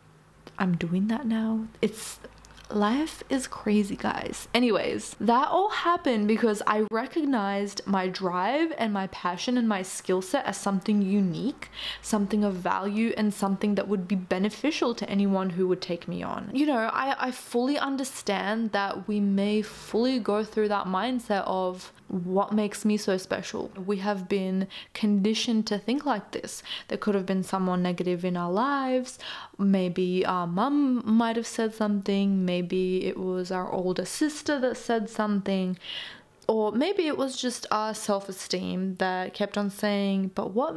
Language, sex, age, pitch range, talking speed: English, female, 20-39, 190-230 Hz, 160 wpm